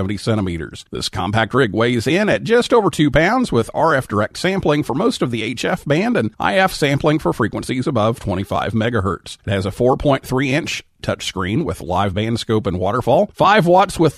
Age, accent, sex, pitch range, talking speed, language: 50-69, American, male, 110-175 Hz, 185 wpm, English